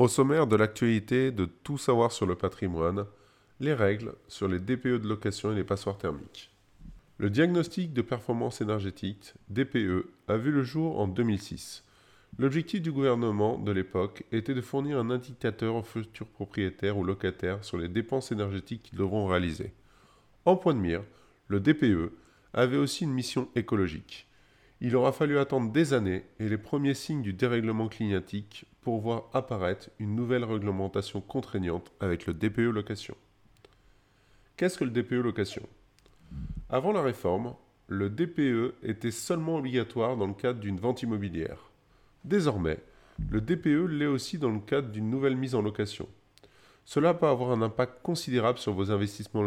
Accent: French